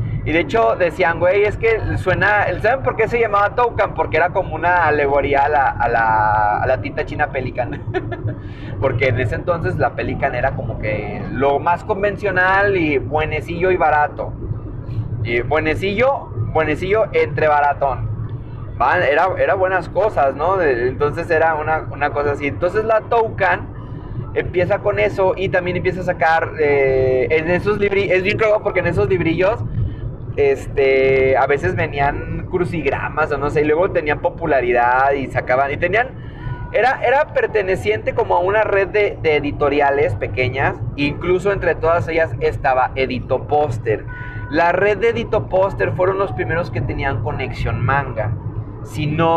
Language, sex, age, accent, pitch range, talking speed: Spanish, male, 30-49, Mexican, 120-185 Hz, 160 wpm